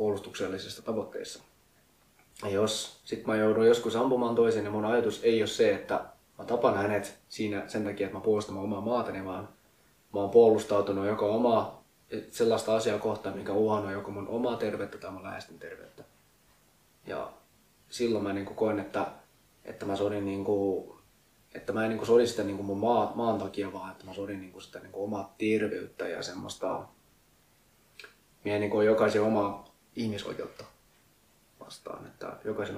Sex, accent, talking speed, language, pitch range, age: male, native, 175 wpm, Finnish, 100-110 Hz, 20-39